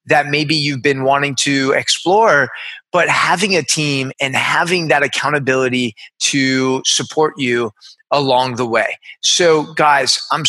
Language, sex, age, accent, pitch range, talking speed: English, male, 20-39, American, 130-155 Hz, 135 wpm